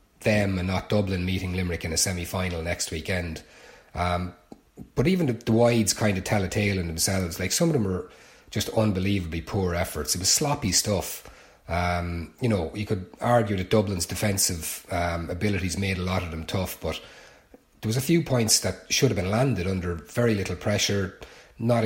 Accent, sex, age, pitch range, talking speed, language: Irish, male, 30-49, 90-105 Hz, 190 wpm, English